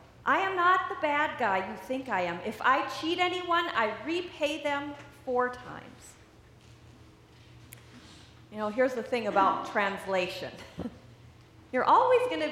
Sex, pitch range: female, 195-290 Hz